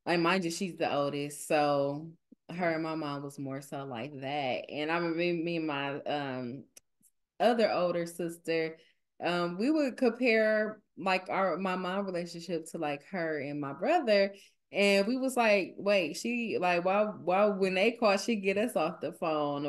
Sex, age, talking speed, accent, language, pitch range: female, 20-39, 185 wpm, American, English, 165-210 Hz